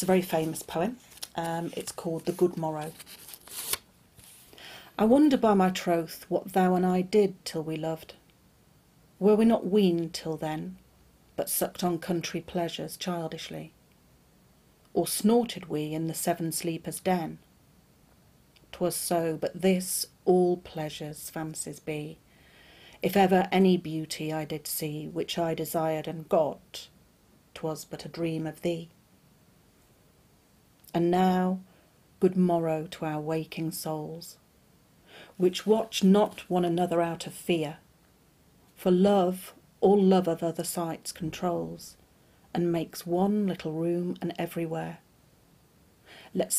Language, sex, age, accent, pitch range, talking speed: English, female, 40-59, British, 160-185 Hz, 130 wpm